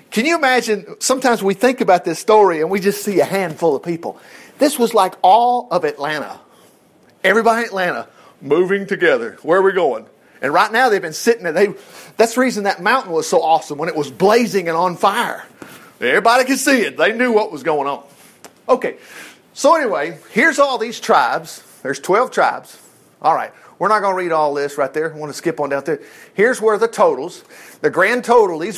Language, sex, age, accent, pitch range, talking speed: English, male, 50-69, American, 180-265 Hz, 215 wpm